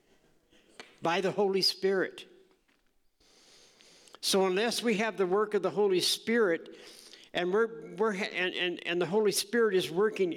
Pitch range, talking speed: 195-240 Hz, 145 wpm